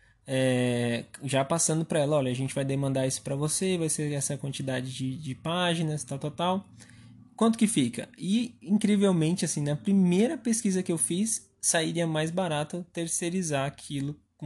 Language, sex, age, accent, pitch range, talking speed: Portuguese, male, 20-39, Brazilian, 135-185 Hz, 170 wpm